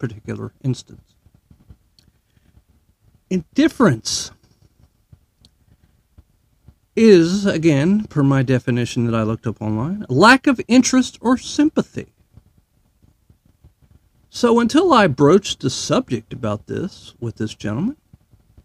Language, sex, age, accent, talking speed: English, male, 50-69, American, 95 wpm